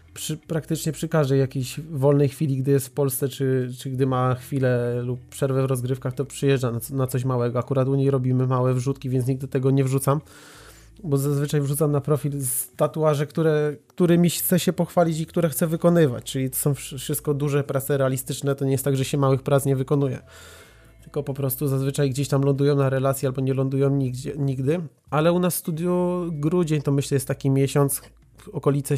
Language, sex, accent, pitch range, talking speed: Polish, male, native, 130-145 Hz, 200 wpm